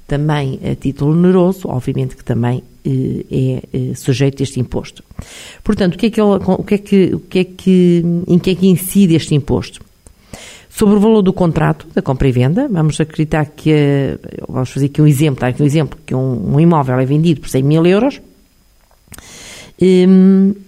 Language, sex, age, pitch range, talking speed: Portuguese, female, 50-69, 135-185 Hz, 190 wpm